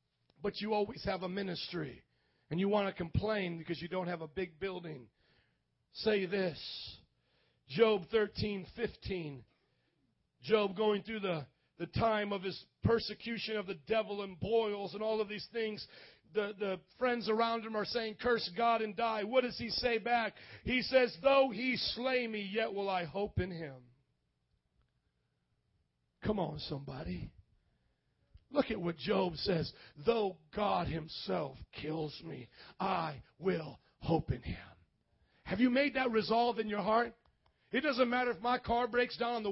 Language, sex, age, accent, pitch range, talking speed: English, male, 40-59, American, 190-245 Hz, 160 wpm